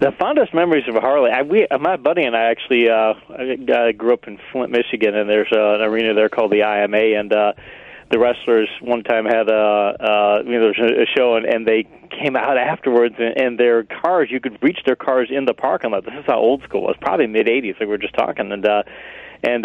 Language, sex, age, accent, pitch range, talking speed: English, male, 40-59, American, 110-135 Hz, 245 wpm